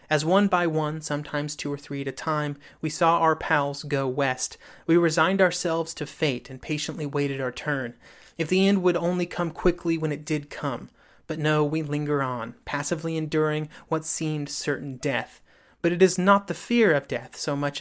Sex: male